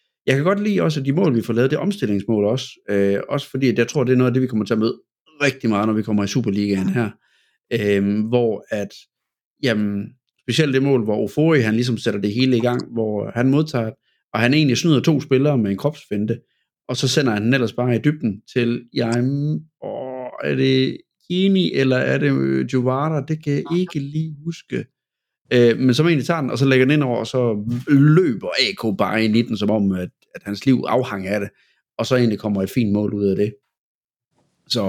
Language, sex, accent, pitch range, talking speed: Danish, male, native, 105-135 Hz, 230 wpm